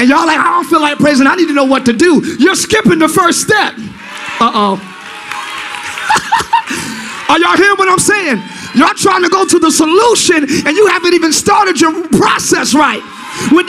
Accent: American